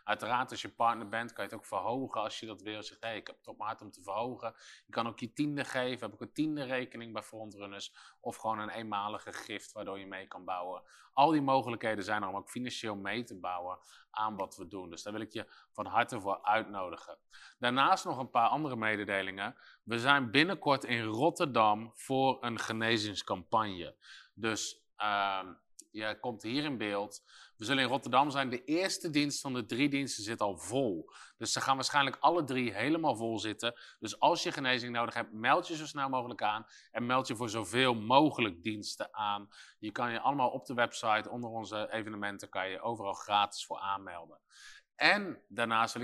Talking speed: 205 wpm